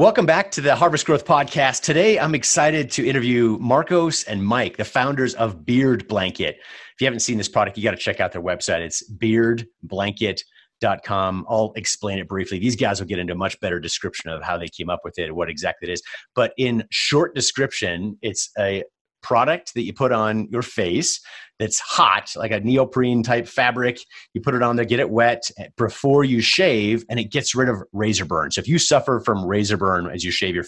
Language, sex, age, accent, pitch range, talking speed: English, male, 30-49, American, 100-130 Hz, 215 wpm